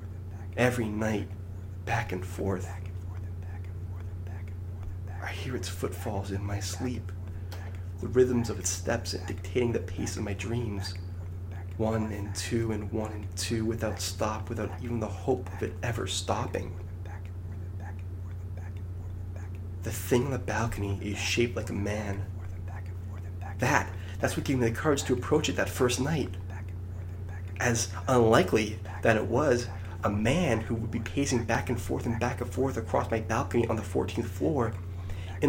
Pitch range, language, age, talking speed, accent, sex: 90-110 Hz, English, 30-49, 150 wpm, American, male